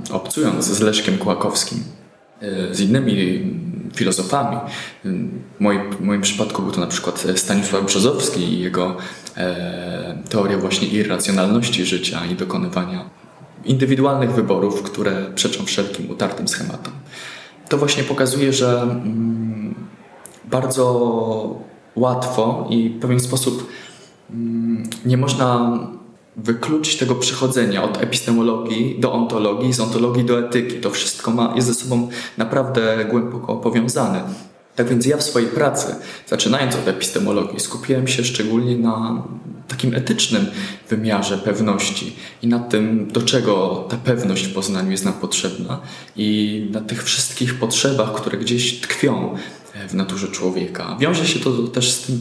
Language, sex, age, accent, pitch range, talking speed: Polish, male, 20-39, native, 105-125 Hz, 125 wpm